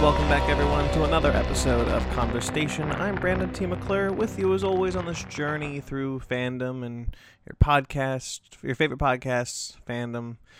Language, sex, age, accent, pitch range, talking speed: English, male, 20-39, American, 120-170 Hz, 165 wpm